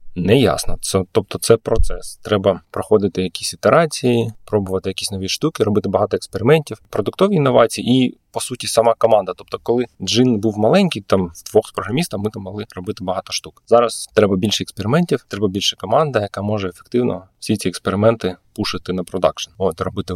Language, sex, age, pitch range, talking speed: Ukrainian, male, 20-39, 95-115 Hz, 165 wpm